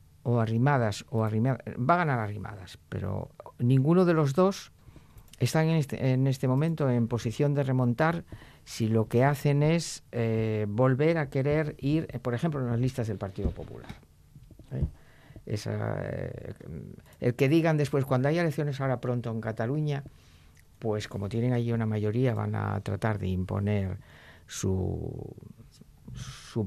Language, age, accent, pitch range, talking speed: Spanish, 50-69, Spanish, 105-135 Hz, 155 wpm